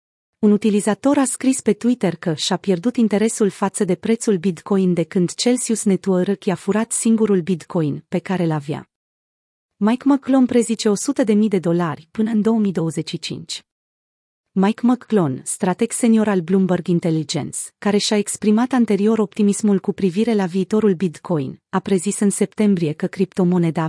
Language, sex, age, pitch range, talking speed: Romanian, female, 30-49, 180-220 Hz, 145 wpm